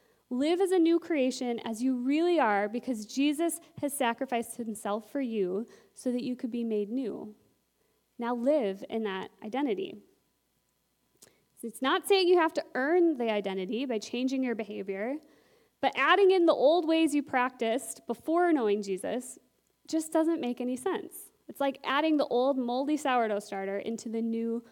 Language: English